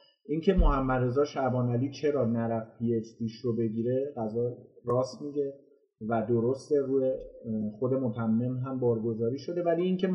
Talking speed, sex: 150 wpm, male